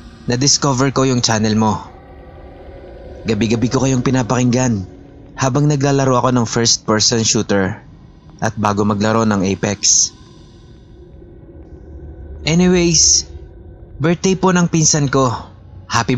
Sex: male